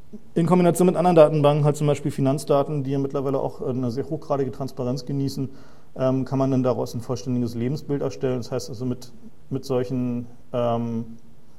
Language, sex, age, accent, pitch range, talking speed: German, male, 40-59, German, 125-140 Hz, 175 wpm